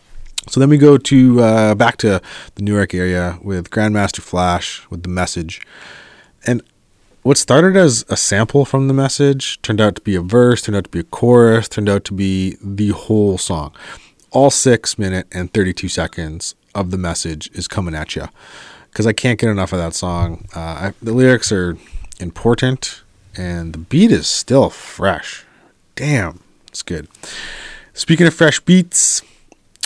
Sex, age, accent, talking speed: male, 30-49, American, 175 wpm